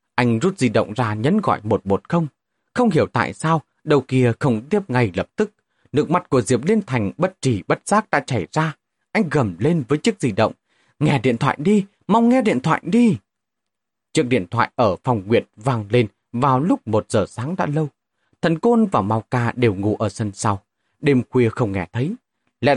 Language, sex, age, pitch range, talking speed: Vietnamese, male, 30-49, 110-170 Hz, 210 wpm